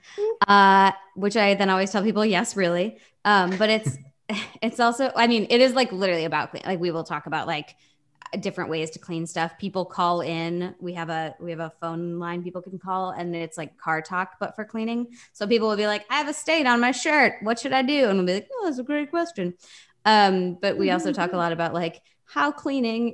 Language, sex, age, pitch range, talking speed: English, female, 20-39, 165-210 Hz, 235 wpm